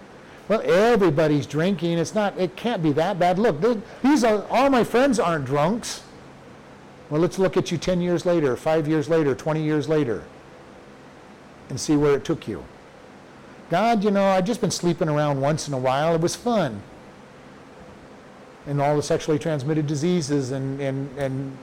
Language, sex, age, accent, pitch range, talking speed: English, male, 50-69, American, 145-195 Hz, 175 wpm